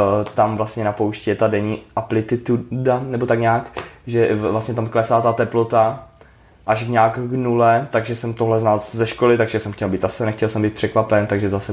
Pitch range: 105-115 Hz